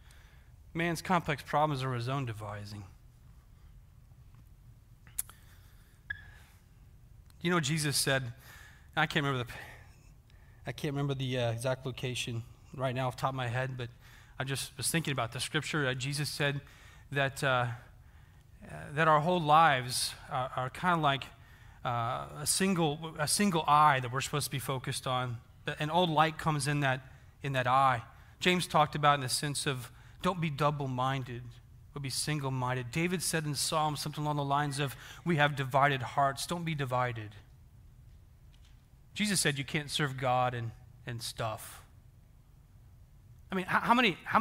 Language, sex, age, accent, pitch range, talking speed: English, male, 30-49, American, 120-155 Hz, 160 wpm